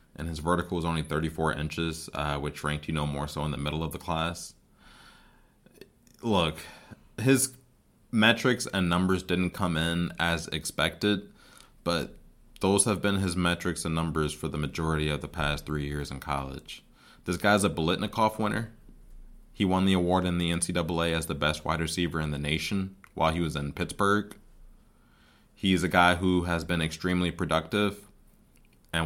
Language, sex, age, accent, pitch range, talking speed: English, male, 20-39, American, 75-90 Hz, 170 wpm